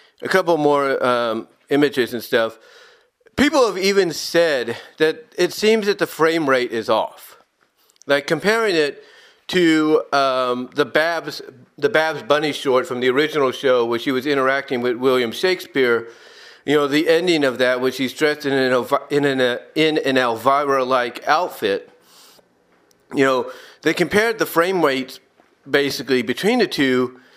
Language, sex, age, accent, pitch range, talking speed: English, male, 40-59, American, 135-190 Hz, 145 wpm